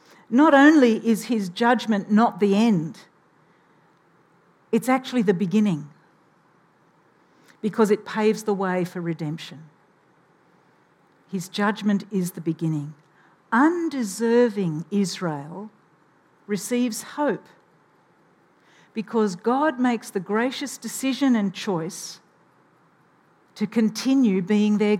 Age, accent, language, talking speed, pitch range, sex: 50-69, Australian, English, 95 wpm, 175-230 Hz, female